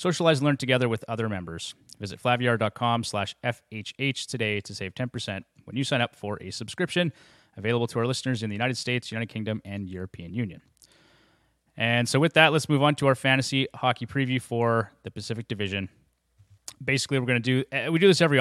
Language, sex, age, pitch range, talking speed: English, male, 30-49, 105-130 Hz, 195 wpm